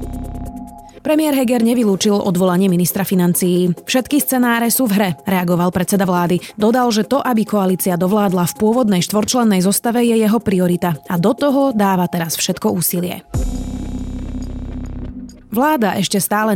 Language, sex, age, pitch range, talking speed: Slovak, female, 30-49, 180-230 Hz, 135 wpm